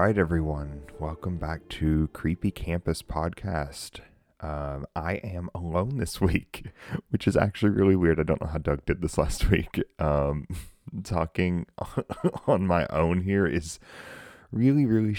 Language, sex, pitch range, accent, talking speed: English, male, 75-95 Hz, American, 145 wpm